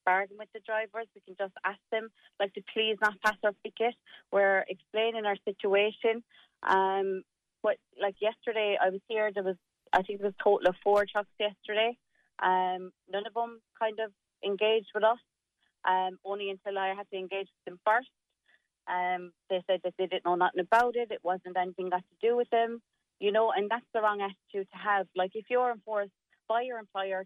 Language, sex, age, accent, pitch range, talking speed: English, female, 30-49, Irish, 195-240 Hz, 205 wpm